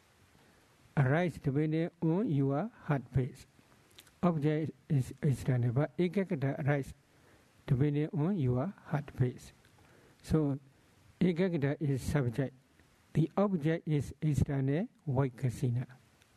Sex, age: male, 60-79